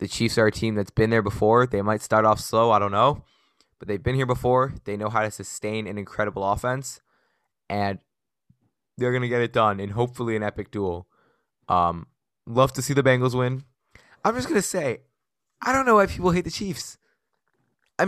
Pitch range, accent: 105-135 Hz, American